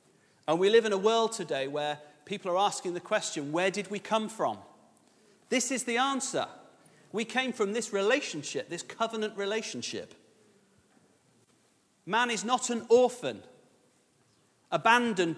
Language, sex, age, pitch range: English, male, 40-59, 160-215 Hz